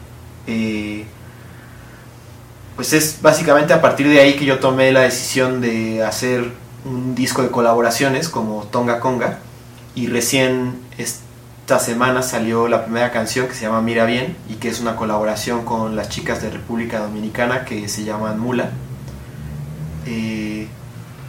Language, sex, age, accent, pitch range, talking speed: Spanish, male, 30-49, Mexican, 115-125 Hz, 145 wpm